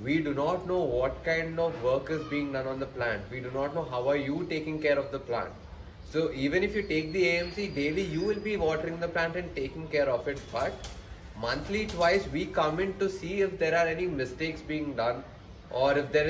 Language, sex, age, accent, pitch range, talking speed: English, male, 20-39, Indian, 135-165 Hz, 230 wpm